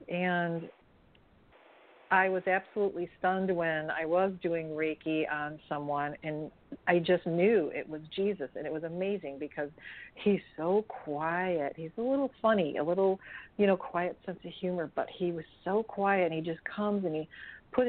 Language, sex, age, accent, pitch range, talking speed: English, female, 50-69, American, 160-195 Hz, 170 wpm